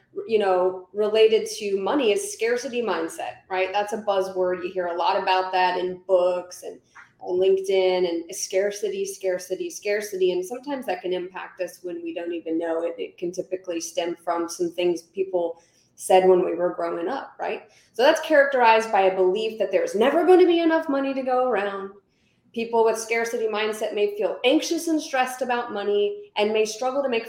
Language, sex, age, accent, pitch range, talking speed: English, female, 20-39, American, 185-245 Hz, 190 wpm